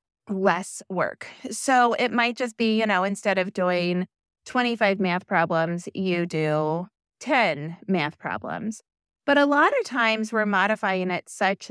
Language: English